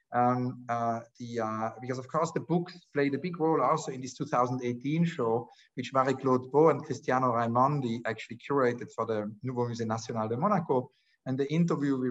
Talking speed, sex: 180 wpm, male